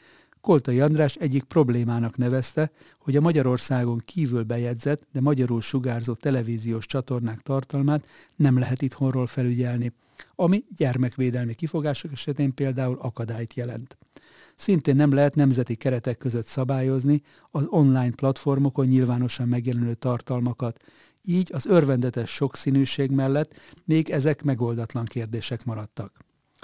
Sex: male